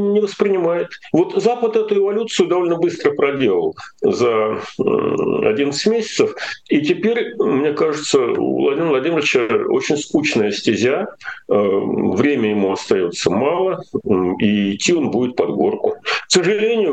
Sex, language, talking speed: male, Russian, 115 wpm